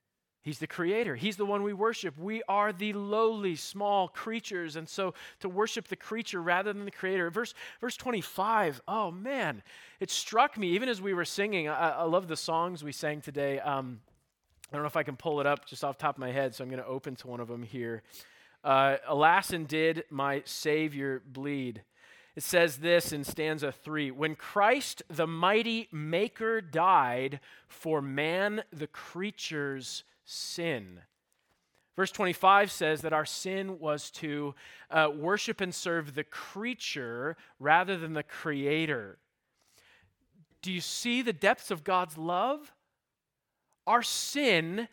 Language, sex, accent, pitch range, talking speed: English, male, American, 150-205 Hz, 165 wpm